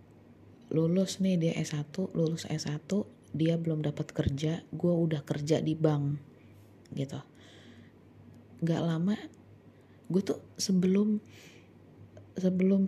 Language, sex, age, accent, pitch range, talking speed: Indonesian, female, 20-39, native, 150-180 Hz, 100 wpm